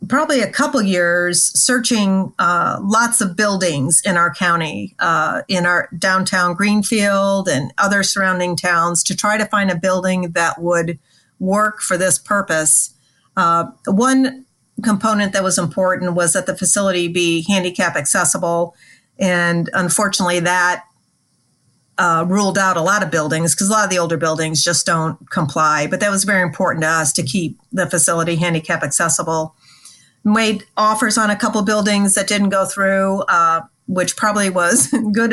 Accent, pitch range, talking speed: American, 175-205 Hz, 160 wpm